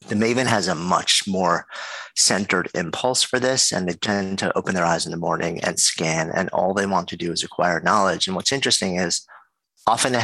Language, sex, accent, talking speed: English, male, American, 215 wpm